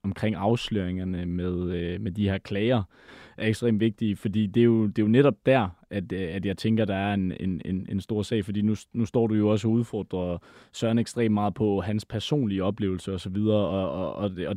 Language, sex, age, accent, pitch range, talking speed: Danish, male, 20-39, native, 100-120 Hz, 210 wpm